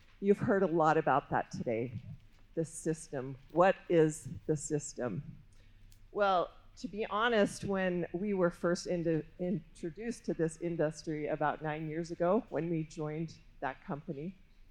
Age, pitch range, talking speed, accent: 50-69, 135-180 Hz, 140 wpm, American